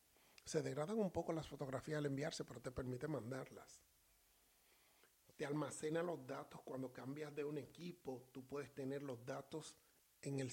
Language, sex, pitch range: Spanish, male, 135-195 Hz